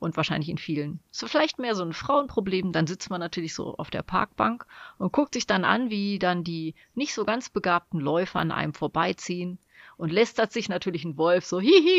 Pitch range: 175-235 Hz